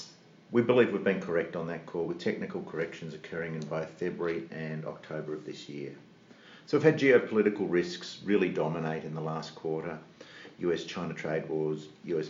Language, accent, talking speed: English, Australian, 170 wpm